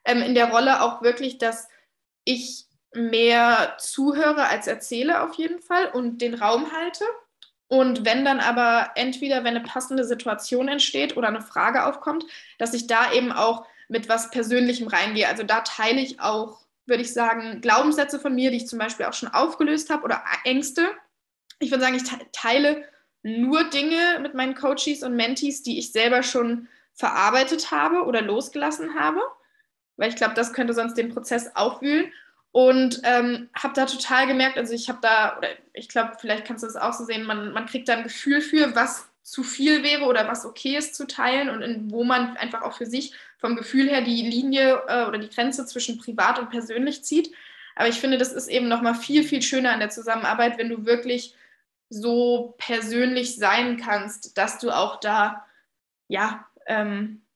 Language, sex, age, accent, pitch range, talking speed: German, female, 10-29, German, 230-275 Hz, 185 wpm